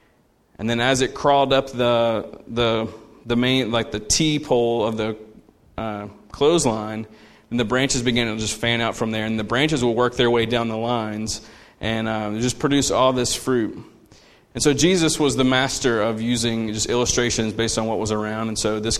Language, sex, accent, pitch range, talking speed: English, male, American, 110-125 Hz, 200 wpm